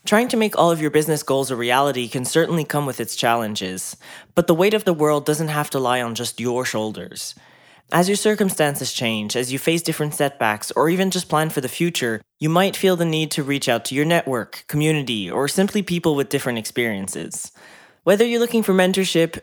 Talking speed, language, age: 215 wpm, English, 20-39